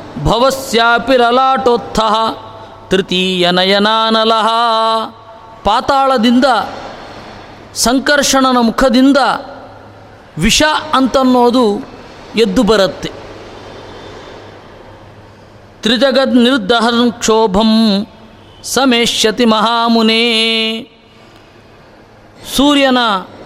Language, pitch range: Kannada, 195-265 Hz